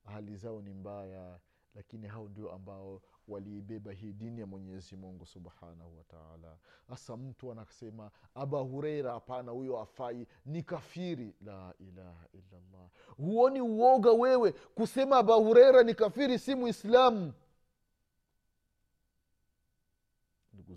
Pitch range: 90-120 Hz